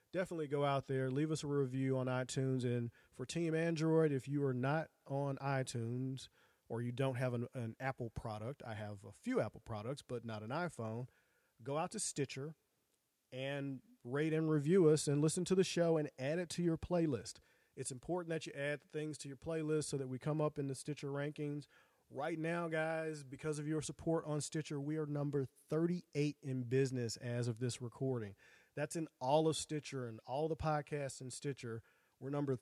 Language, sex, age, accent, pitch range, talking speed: English, male, 40-59, American, 125-155 Hz, 200 wpm